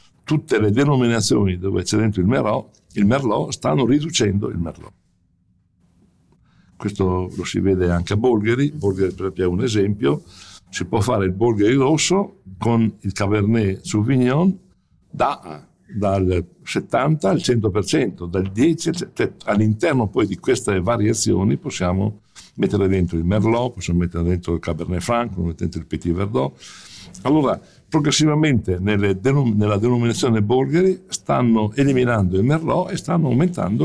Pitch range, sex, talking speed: 95-120 Hz, male, 140 wpm